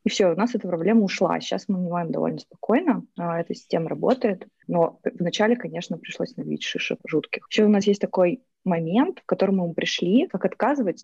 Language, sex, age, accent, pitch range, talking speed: Russian, female, 20-39, native, 160-195 Hz, 190 wpm